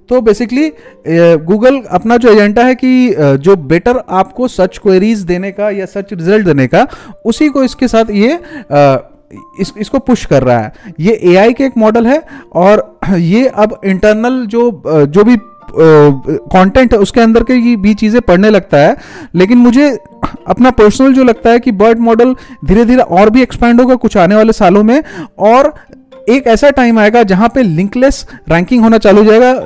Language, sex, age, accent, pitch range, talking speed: Hindi, male, 30-49, native, 195-245 Hz, 180 wpm